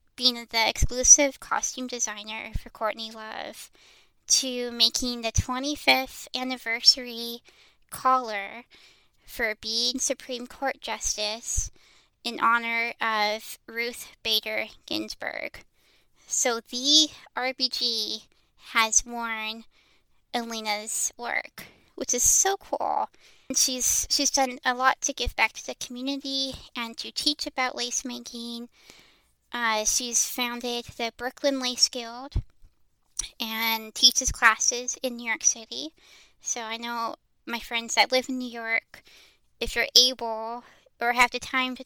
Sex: female